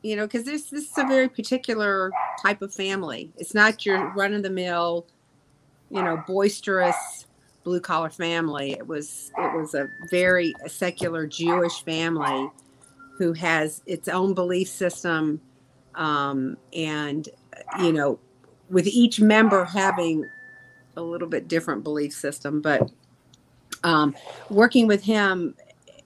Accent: American